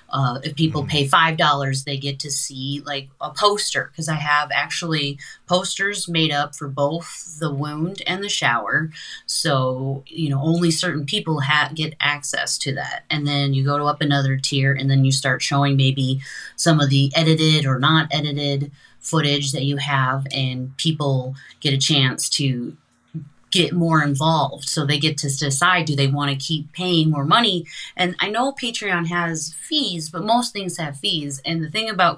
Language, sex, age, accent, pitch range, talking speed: English, female, 30-49, American, 140-170 Hz, 185 wpm